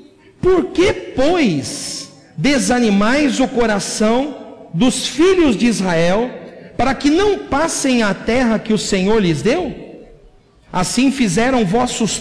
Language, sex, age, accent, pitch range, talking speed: Portuguese, male, 50-69, Brazilian, 195-260 Hz, 120 wpm